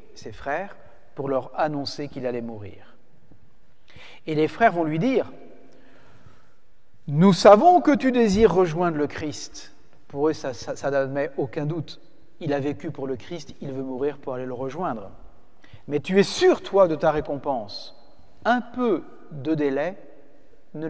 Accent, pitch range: French, 135-180 Hz